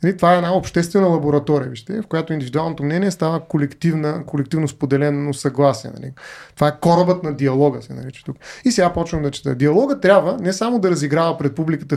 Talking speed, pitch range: 170 wpm, 145-195 Hz